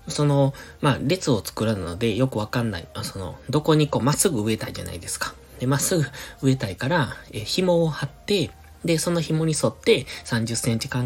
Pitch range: 105-140 Hz